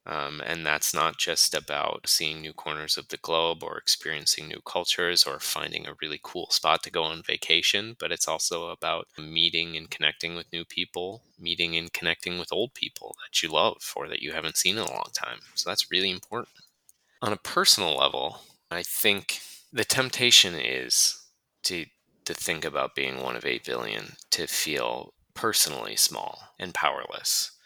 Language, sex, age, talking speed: English, male, 20-39, 180 wpm